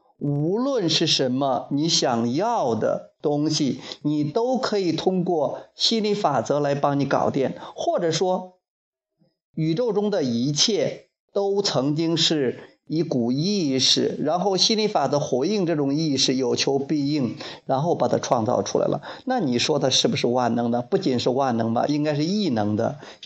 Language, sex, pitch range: Chinese, male, 130-180 Hz